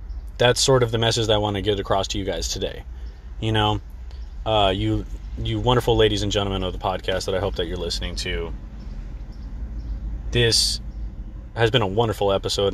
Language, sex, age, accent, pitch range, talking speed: English, male, 20-39, American, 85-125 Hz, 190 wpm